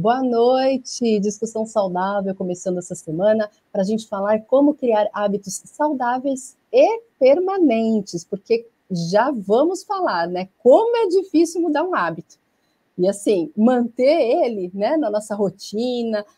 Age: 40-59